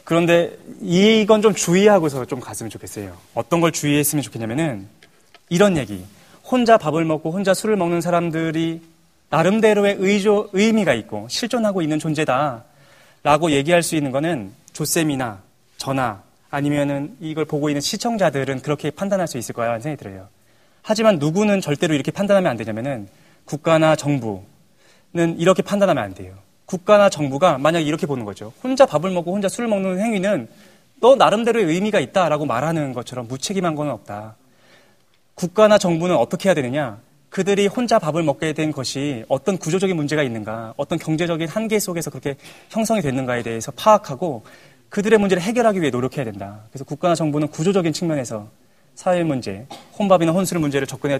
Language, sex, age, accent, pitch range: Korean, male, 30-49, native, 135-190 Hz